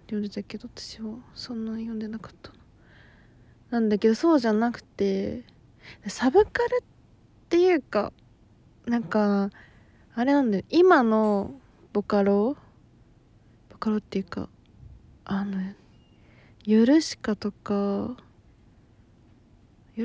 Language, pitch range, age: Japanese, 195-255 Hz, 20-39